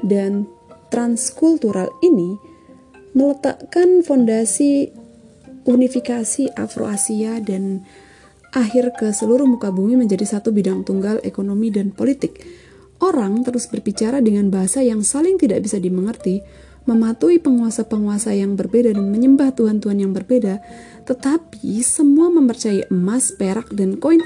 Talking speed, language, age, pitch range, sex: 115 wpm, Indonesian, 30-49, 200-255 Hz, female